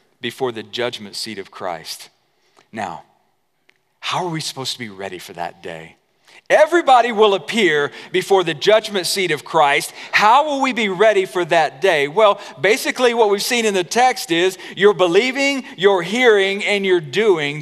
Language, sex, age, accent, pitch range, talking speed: English, male, 40-59, American, 130-200 Hz, 170 wpm